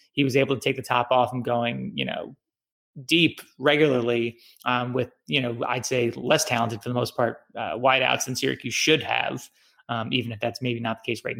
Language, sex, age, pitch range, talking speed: English, male, 30-49, 115-135 Hz, 215 wpm